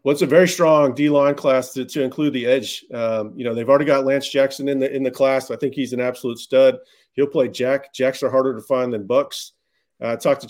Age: 40-59